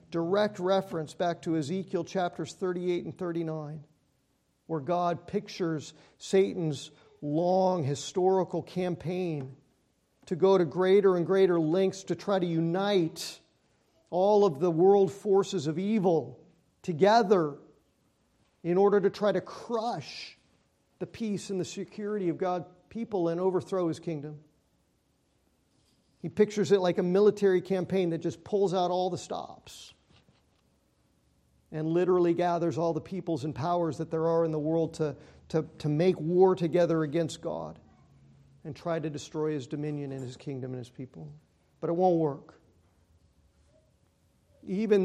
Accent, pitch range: American, 155-190 Hz